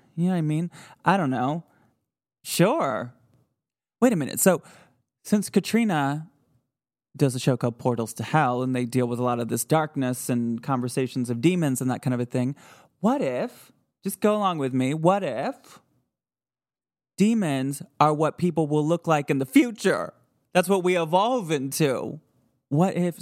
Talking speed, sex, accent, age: 175 wpm, male, American, 20-39